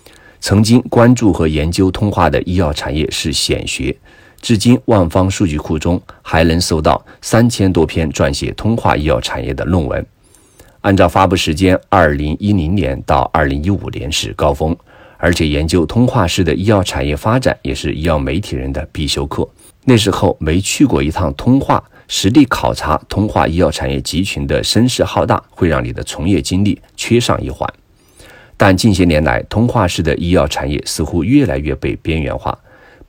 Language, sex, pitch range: Chinese, male, 80-100 Hz